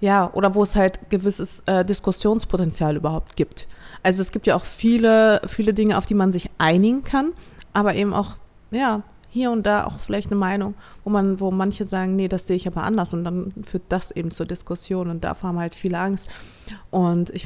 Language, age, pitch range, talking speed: German, 30-49, 175-200 Hz, 210 wpm